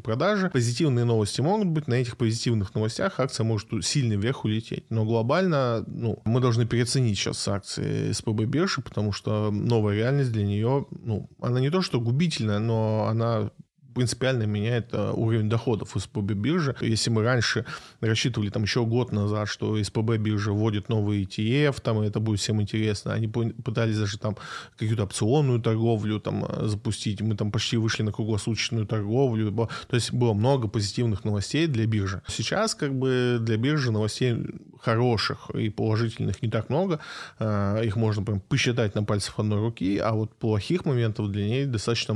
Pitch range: 105-125 Hz